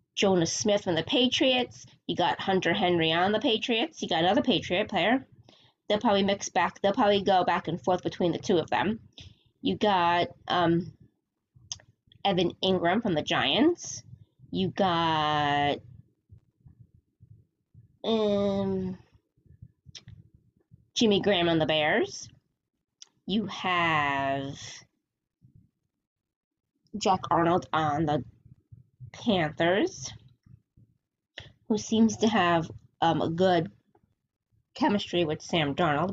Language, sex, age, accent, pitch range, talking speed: English, female, 20-39, American, 125-210 Hz, 110 wpm